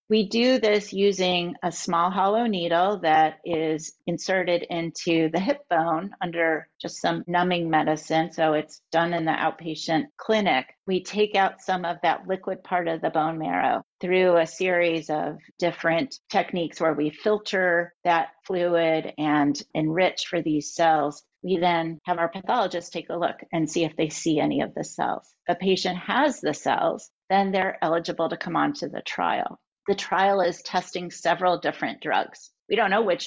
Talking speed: 175 wpm